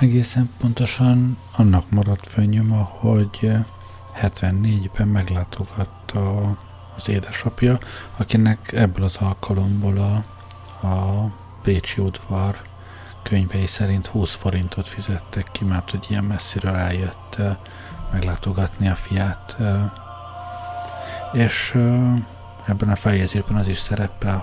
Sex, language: male, Hungarian